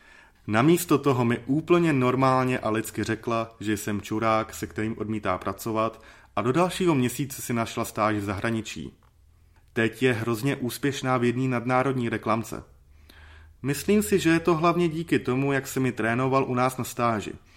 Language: Czech